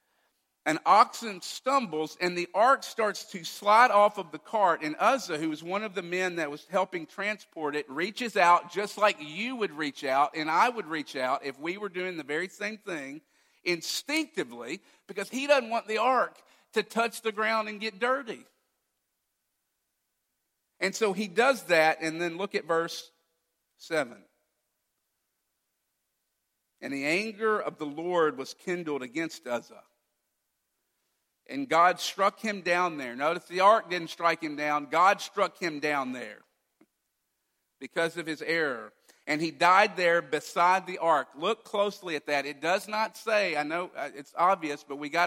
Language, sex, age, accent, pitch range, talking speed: English, male, 50-69, American, 160-210 Hz, 165 wpm